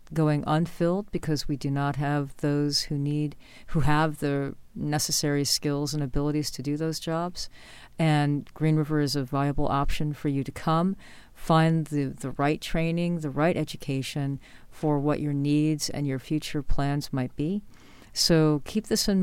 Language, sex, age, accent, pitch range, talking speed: English, female, 40-59, American, 140-165 Hz, 170 wpm